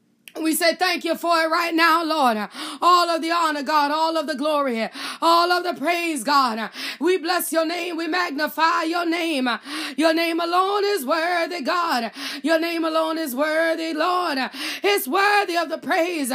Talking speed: 180 wpm